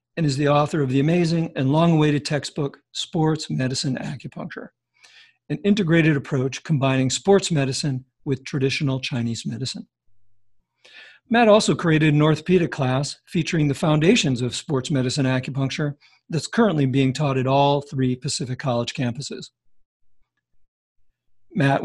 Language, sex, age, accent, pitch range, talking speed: English, male, 50-69, American, 135-170 Hz, 125 wpm